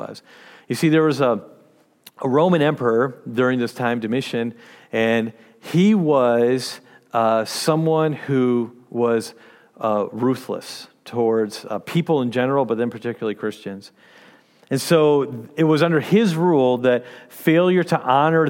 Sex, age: male, 40-59